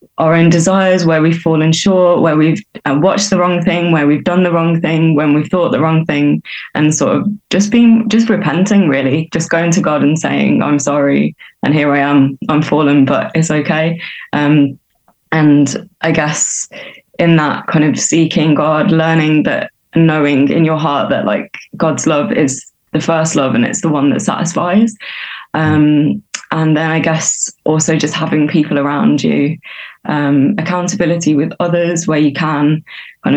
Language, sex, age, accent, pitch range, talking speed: English, female, 20-39, British, 150-175 Hz, 180 wpm